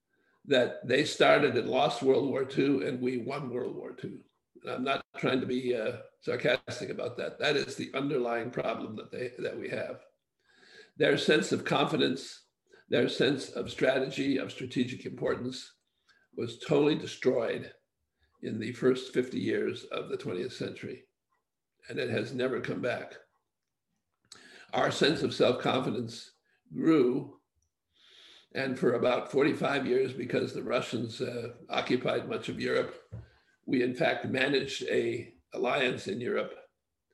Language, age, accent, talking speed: English, 60-79, American, 145 wpm